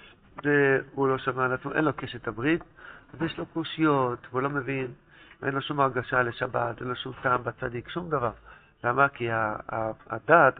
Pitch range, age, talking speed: 125-160 Hz, 60-79, 170 wpm